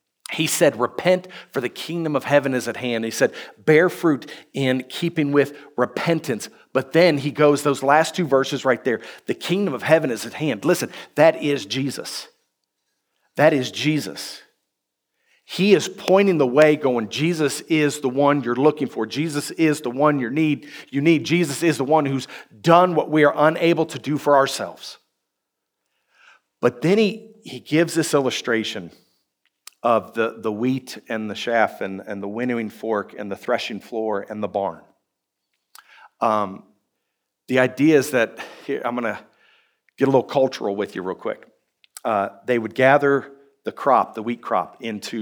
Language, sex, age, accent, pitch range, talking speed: English, male, 50-69, American, 120-160 Hz, 170 wpm